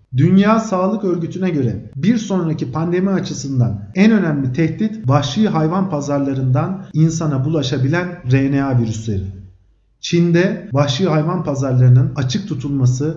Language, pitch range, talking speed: Turkish, 130-170 Hz, 110 wpm